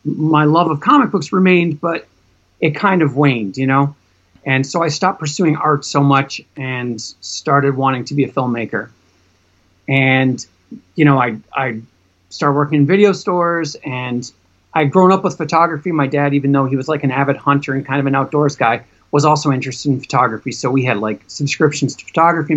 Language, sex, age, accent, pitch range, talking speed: English, male, 30-49, American, 130-155 Hz, 190 wpm